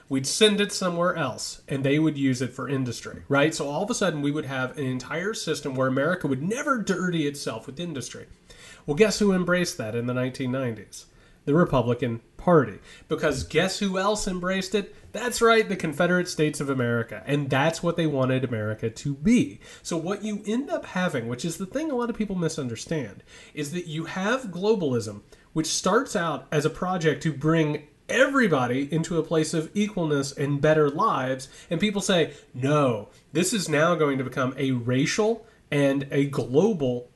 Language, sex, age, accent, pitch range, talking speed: English, male, 30-49, American, 130-180 Hz, 185 wpm